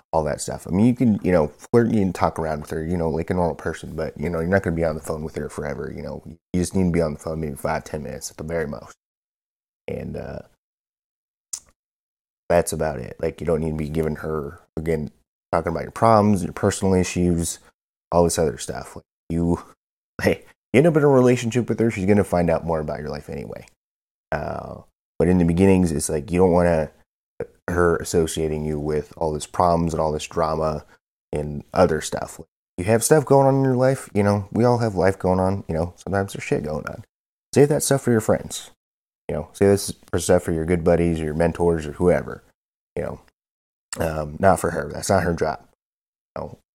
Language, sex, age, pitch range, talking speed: English, male, 30-49, 80-95 Hz, 230 wpm